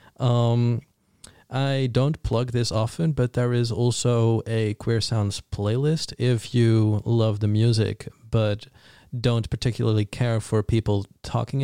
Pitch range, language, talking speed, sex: 105-125 Hz, English, 135 wpm, male